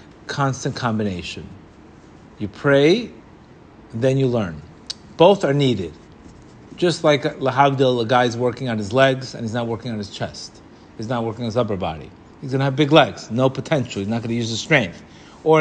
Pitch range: 125-165 Hz